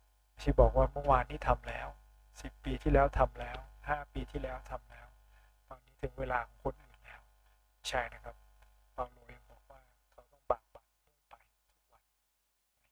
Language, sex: Thai, male